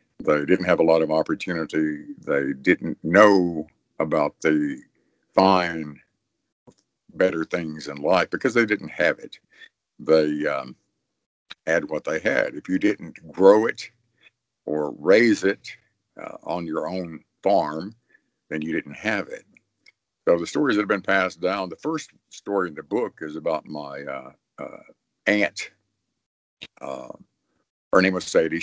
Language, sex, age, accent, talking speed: English, male, 60-79, American, 155 wpm